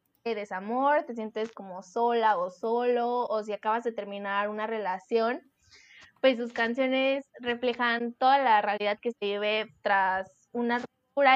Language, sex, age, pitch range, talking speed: Spanish, female, 10-29, 215-255 Hz, 150 wpm